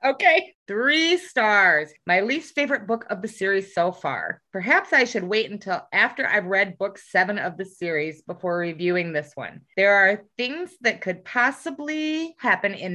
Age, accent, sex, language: 30-49, American, female, English